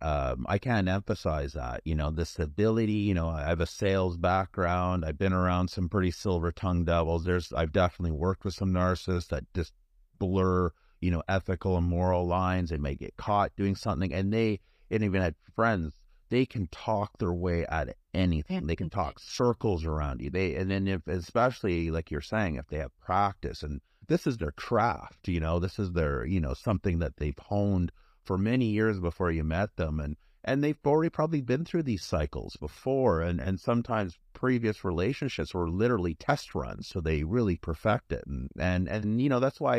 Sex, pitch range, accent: male, 85-105 Hz, American